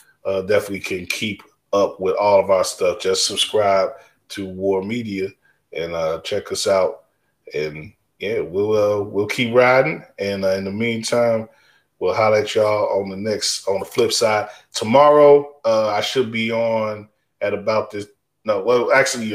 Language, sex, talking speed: English, male, 170 wpm